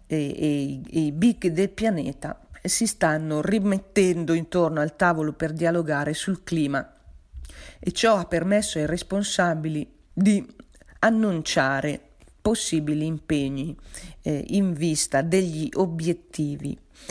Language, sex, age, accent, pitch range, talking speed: Italian, female, 40-59, native, 160-190 Hz, 110 wpm